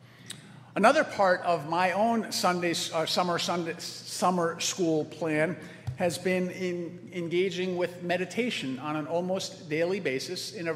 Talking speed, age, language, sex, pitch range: 140 wpm, 50-69, English, male, 140-180 Hz